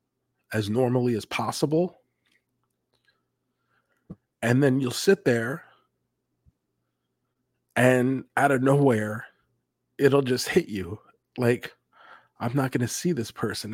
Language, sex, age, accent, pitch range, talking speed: English, male, 40-59, American, 115-145 Hz, 110 wpm